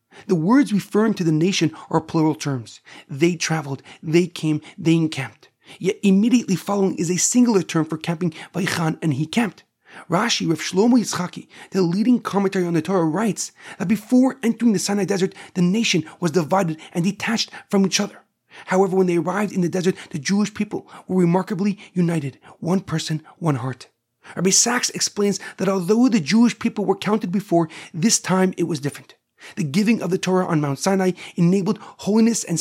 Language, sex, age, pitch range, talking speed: English, male, 40-59, 170-210 Hz, 180 wpm